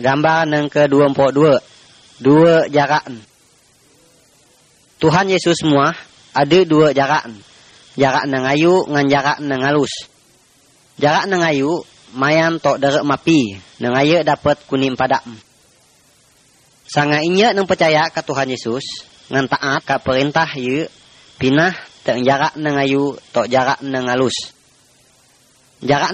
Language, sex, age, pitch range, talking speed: Indonesian, female, 20-39, 130-150 Hz, 120 wpm